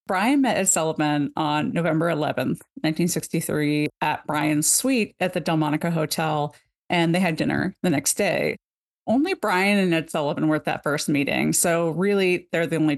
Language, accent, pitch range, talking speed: English, American, 155-195 Hz, 170 wpm